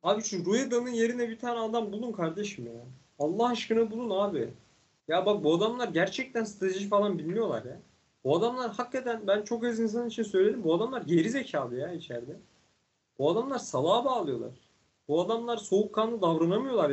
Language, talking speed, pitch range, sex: Turkish, 165 wpm, 170-235 Hz, male